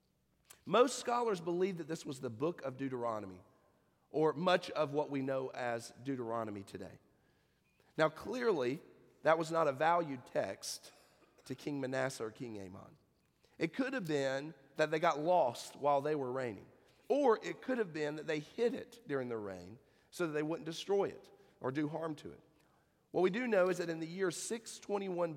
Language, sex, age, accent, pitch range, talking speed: English, male, 40-59, American, 130-175 Hz, 185 wpm